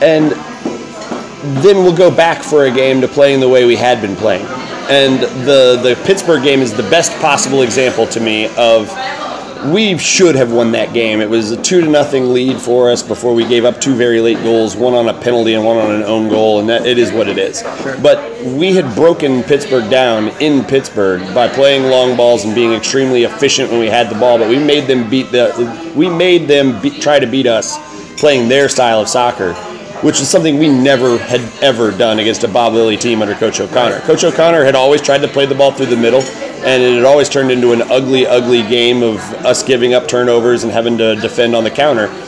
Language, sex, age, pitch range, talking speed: English, male, 30-49, 115-140 Hz, 225 wpm